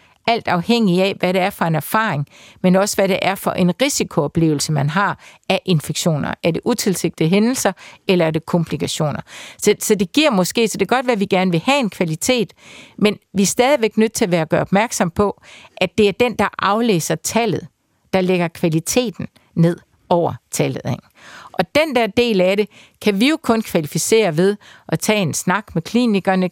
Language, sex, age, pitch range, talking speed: Danish, female, 50-69, 170-210 Hz, 200 wpm